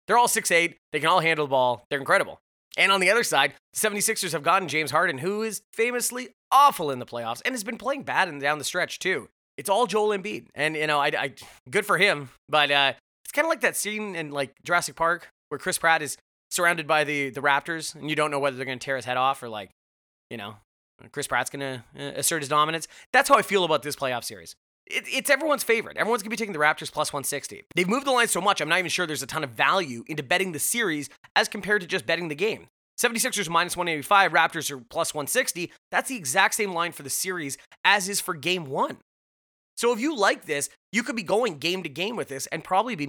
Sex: male